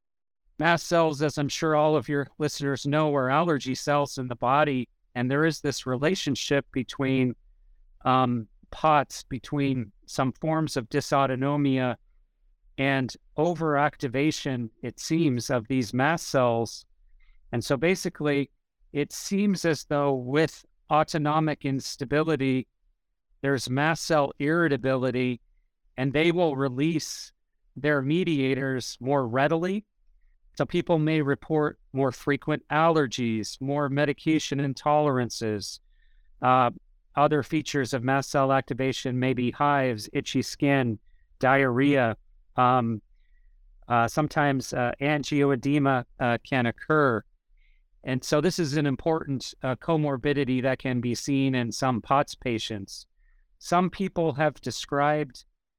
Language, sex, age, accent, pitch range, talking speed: English, male, 50-69, American, 125-150 Hz, 120 wpm